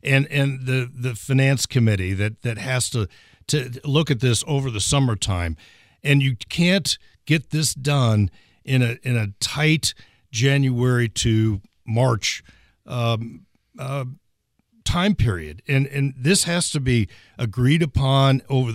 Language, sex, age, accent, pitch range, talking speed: English, male, 50-69, American, 115-140 Hz, 140 wpm